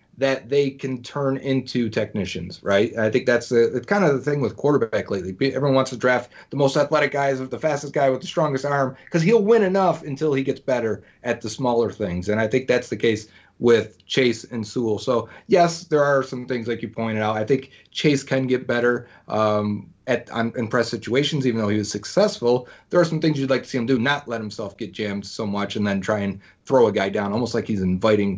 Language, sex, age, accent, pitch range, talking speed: English, male, 30-49, American, 110-140 Hz, 240 wpm